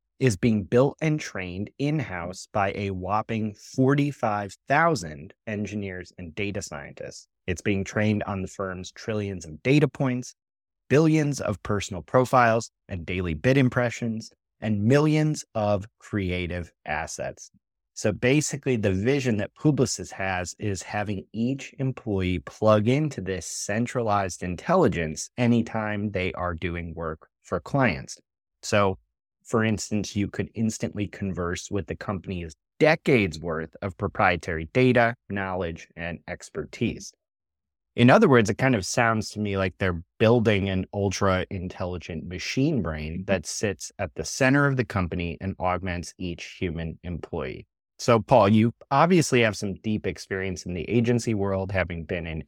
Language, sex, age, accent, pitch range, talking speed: English, male, 30-49, American, 90-115 Hz, 140 wpm